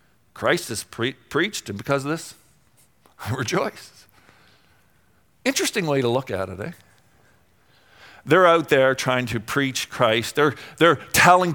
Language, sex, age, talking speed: English, male, 50-69, 135 wpm